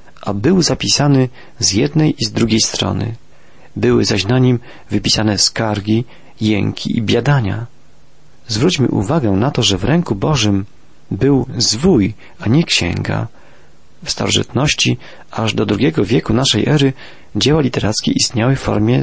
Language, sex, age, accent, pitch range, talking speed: Polish, male, 40-59, native, 105-145 Hz, 140 wpm